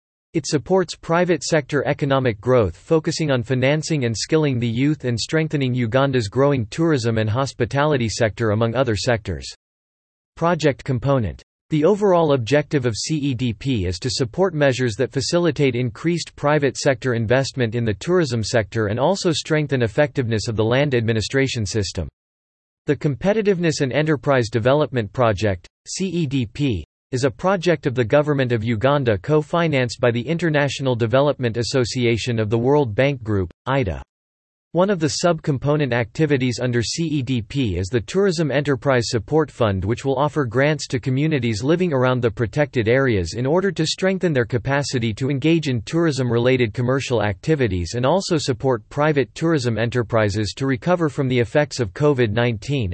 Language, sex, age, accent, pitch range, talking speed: English, male, 40-59, American, 120-150 Hz, 150 wpm